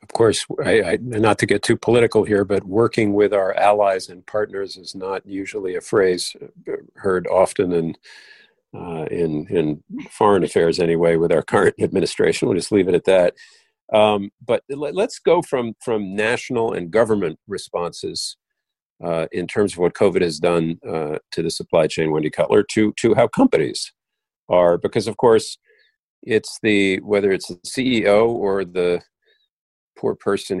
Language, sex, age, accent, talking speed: English, male, 50-69, American, 165 wpm